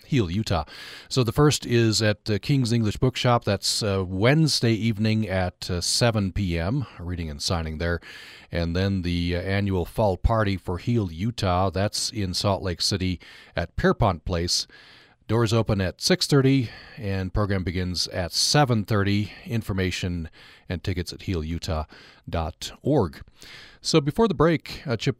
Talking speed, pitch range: 150 wpm, 90-120 Hz